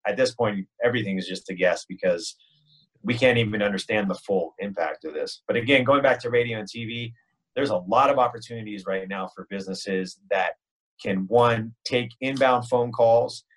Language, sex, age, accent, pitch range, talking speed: English, male, 30-49, American, 105-135 Hz, 185 wpm